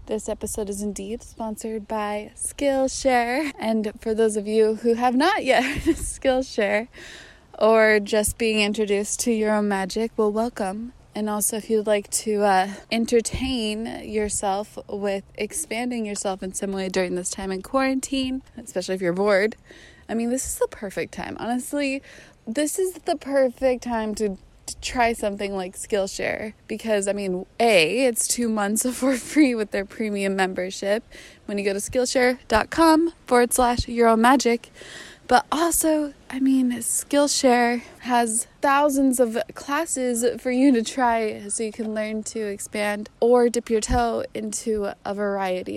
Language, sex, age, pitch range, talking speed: English, female, 20-39, 210-250 Hz, 155 wpm